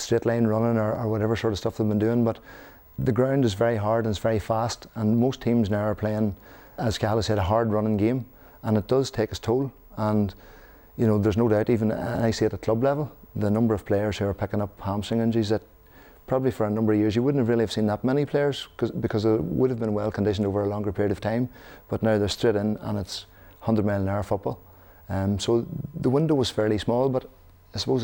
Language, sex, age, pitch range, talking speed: English, male, 30-49, 105-115 Hz, 235 wpm